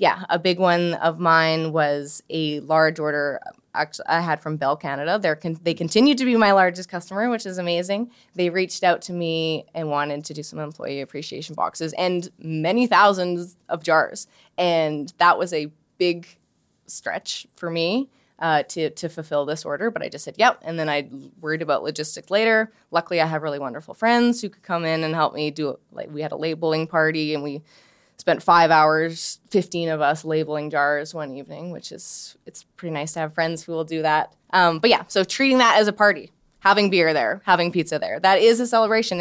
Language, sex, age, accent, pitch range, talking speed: English, female, 20-39, American, 155-190 Hz, 205 wpm